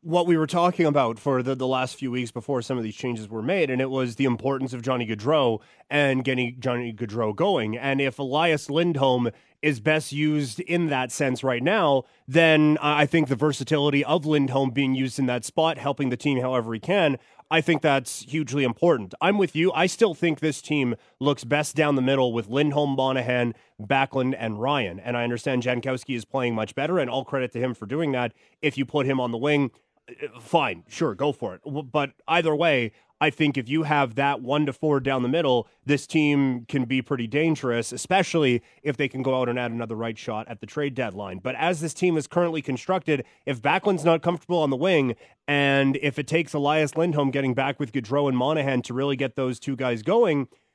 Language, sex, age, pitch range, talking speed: English, male, 30-49, 125-150 Hz, 215 wpm